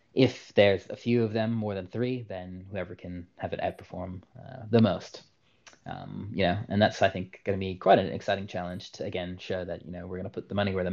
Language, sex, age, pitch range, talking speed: English, male, 20-39, 95-115 Hz, 255 wpm